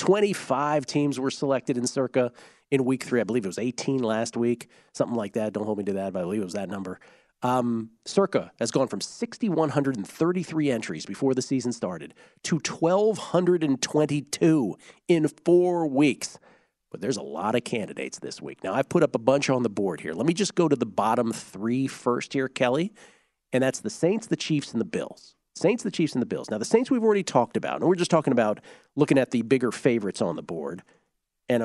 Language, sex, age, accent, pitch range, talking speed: English, male, 40-59, American, 120-165 Hz, 210 wpm